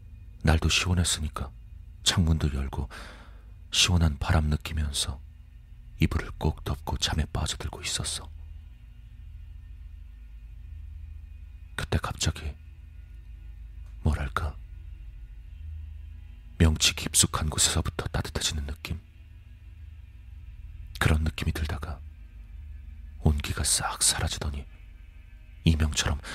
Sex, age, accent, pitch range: male, 40-59, native, 75-85 Hz